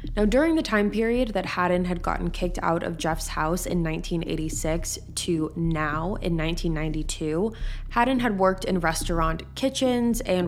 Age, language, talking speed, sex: 20-39, English, 155 wpm, female